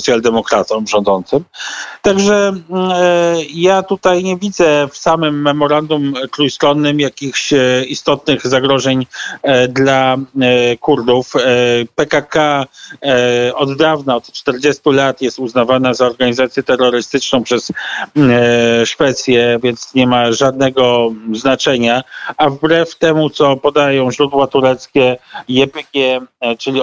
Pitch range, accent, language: 125-145 Hz, native, Polish